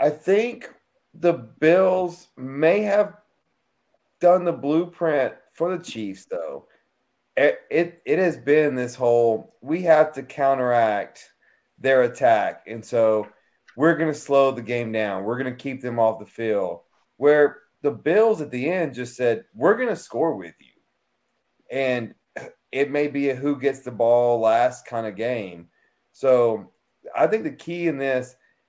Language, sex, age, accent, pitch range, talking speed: English, male, 30-49, American, 115-155 Hz, 160 wpm